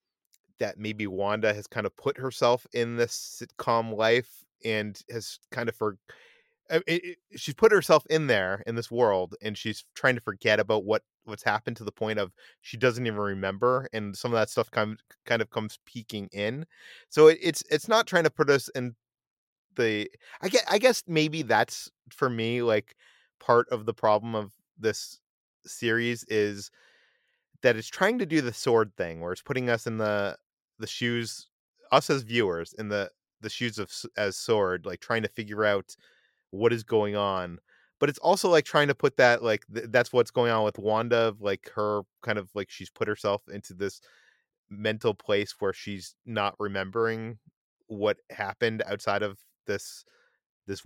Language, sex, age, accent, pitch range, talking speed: English, male, 30-49, American, 105-140 Hz, 185 wpm